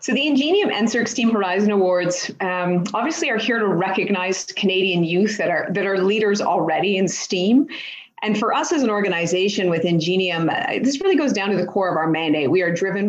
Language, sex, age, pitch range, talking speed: English, female, 40-59, 170-210 Hz, 200 wpm